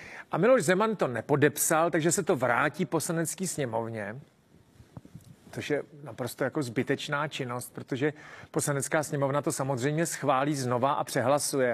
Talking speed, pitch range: 135 wpm, 145-185 Hz